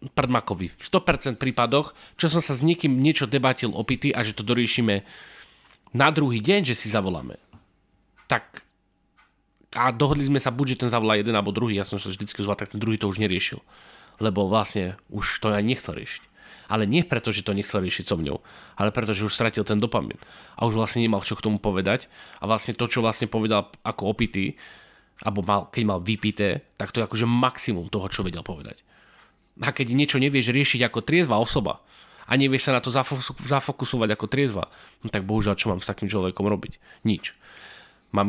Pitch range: 105-130 Hz